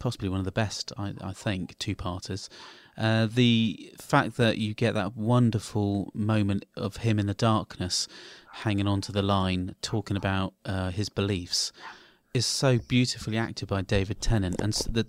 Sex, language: male, English